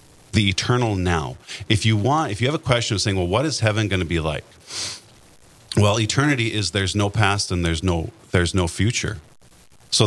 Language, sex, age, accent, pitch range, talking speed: English, male, 40-59, American, 90-110 Hz, 205 wpm